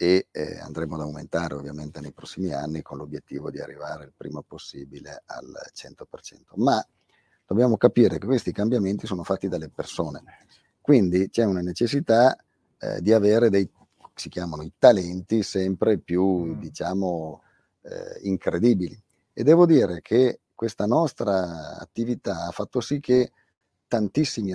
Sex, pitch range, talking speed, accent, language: male, 85-105 Hz, 140 wpm, native, Italian